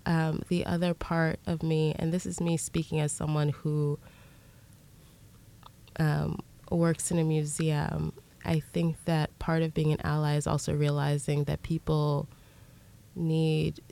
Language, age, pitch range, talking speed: English, 20-39, 150-175 Hz, 140 wpm